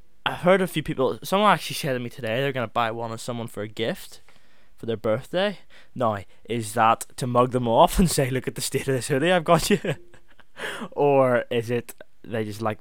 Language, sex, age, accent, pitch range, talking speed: English, male, 10-29, British, 105-135 Hz, 230 wpm